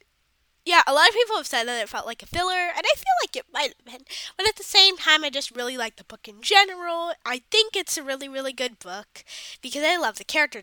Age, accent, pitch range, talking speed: 10-29, American, 235-340 Hz, 265 wpm